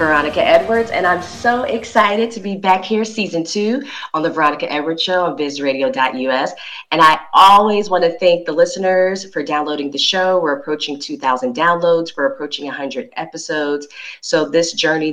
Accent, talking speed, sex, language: American, 165 wpm, female, English